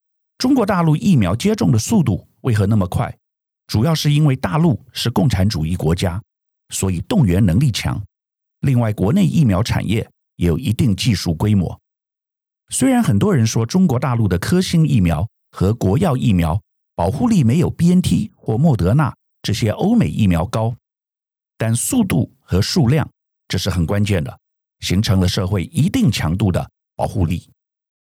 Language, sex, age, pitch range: Chinese, male, 50-69, 95-140 Hz